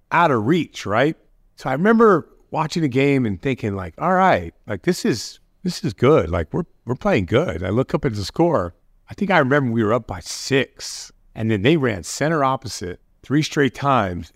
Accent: American